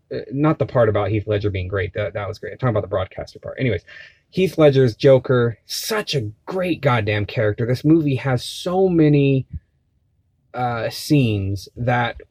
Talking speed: 170 wpm